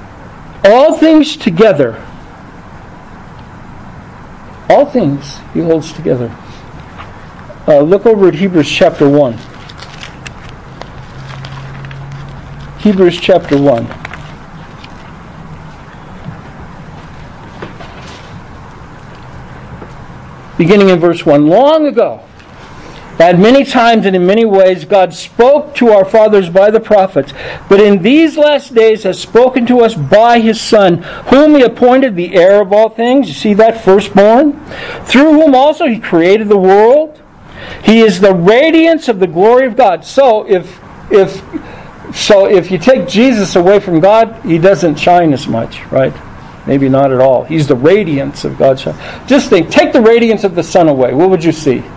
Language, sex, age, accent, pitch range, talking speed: English, male, 60-79, American, 165-235 Hz, 135 wpm